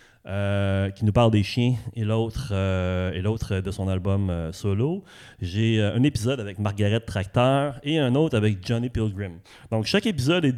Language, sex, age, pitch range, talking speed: French, male, 30-49, 105-135 Hz, 185 wpm